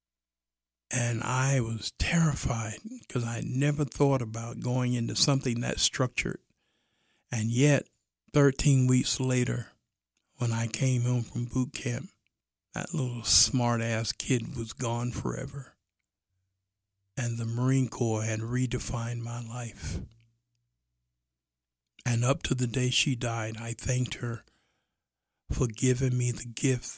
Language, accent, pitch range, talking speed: English, American, 110-130 Hz, 125 wpm